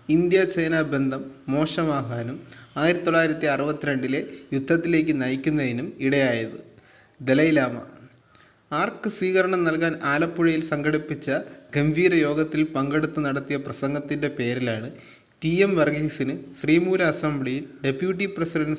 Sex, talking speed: male, 90 wpm